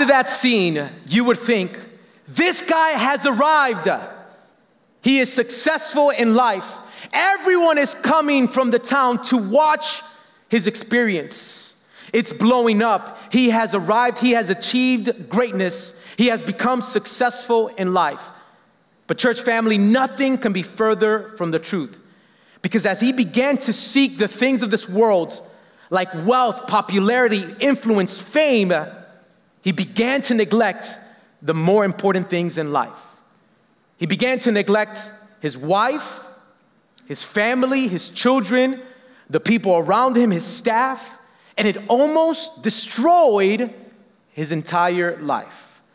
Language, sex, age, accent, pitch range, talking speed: English, male, 30-49, American, 210-260 Hz, 130 wpm